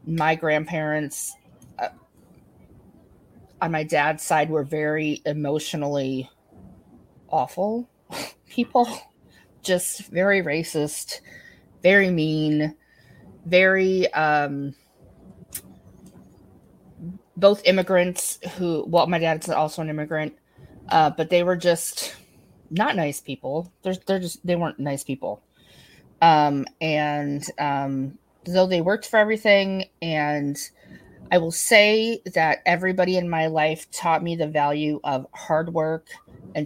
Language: English